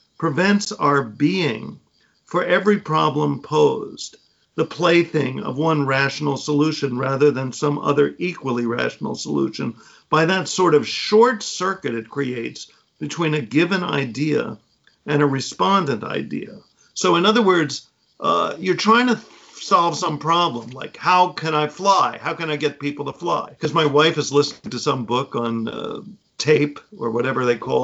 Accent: American